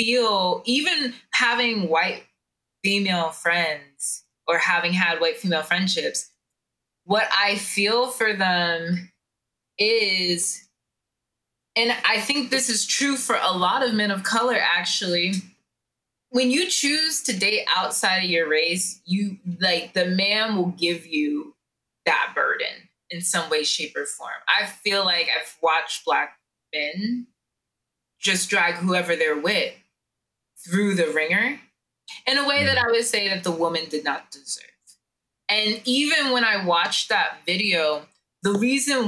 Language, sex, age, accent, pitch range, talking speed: English, female, 20-39, American, 175-250 Hz, 145 wpm